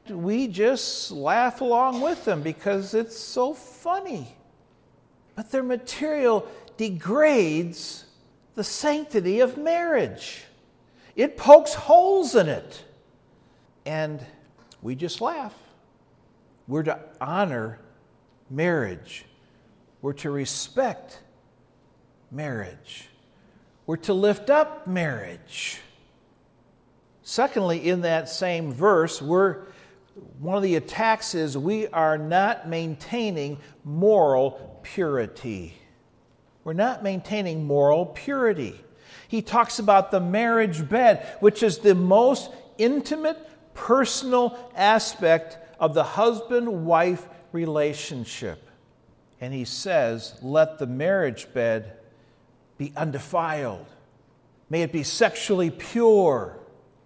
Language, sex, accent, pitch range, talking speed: English, male, American, 150-230 Hz, 100 wpm